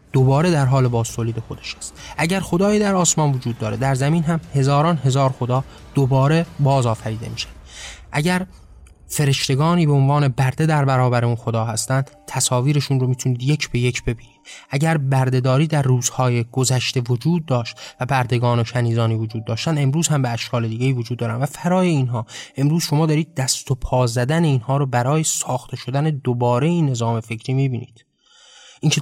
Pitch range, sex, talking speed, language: 125-155 Hz, male, 165 wpm, Persian